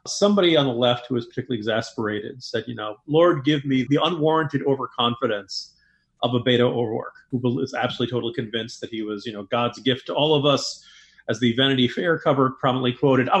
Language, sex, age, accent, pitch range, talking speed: English, male, 40-59, American, 120-160 Hz, 200 wpm